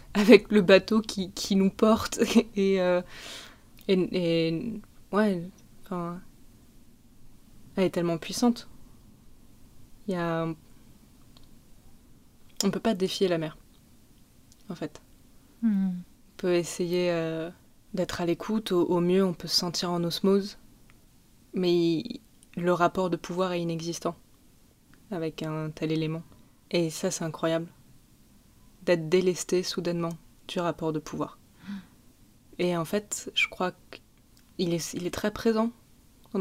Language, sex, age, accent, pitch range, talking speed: French, female, 20-39, French, 170-195 Hz, 125 wpm